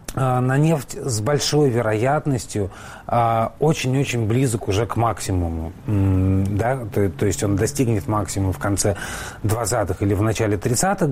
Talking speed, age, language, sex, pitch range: 125 wpm, 30-49, Russian, male, 95-125 Hz